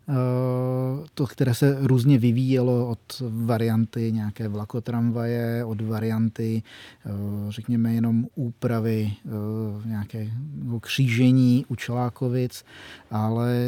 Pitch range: 110-125 Hz